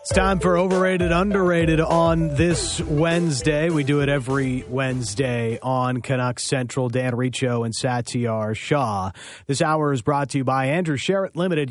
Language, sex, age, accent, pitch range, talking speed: English, male, 30-49, American, 110-155 Hz, 160 wpm